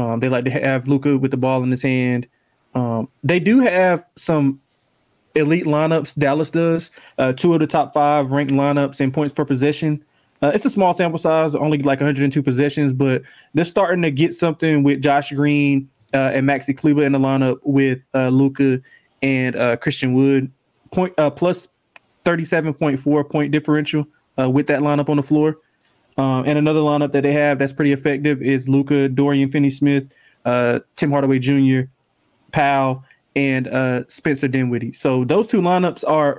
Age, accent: 20-39, American